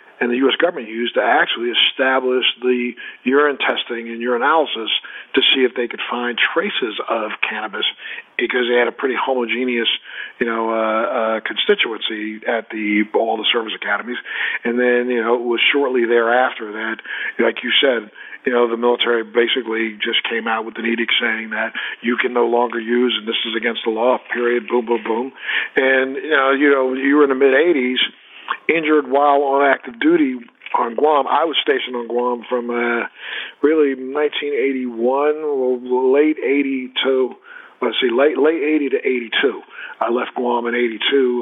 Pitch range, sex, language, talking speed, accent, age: 120-135 Hz, male, English, 175 wpm, American, 50-69